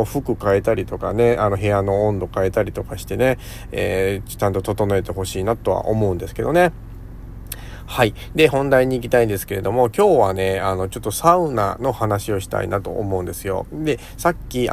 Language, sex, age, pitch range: Japanese, male, 40-59, 95-125 Hz